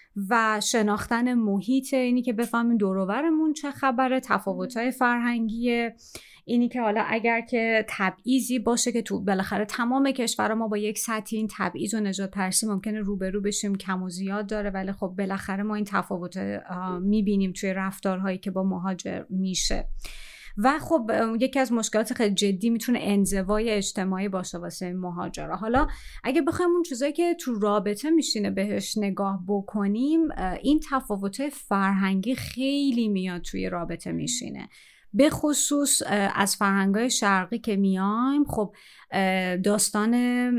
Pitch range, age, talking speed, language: 195-240 Hz, 30-49, 135 wpm, Persian